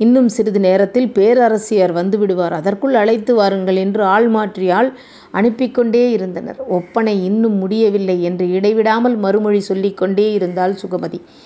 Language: Tamil